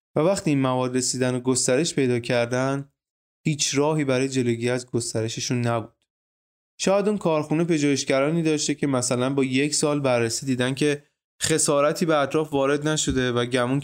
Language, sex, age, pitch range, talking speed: Persian, male, 20-39, 125-150 Hz, 155 wpm